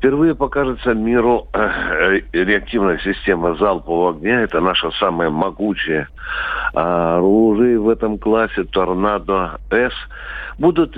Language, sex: Russian, male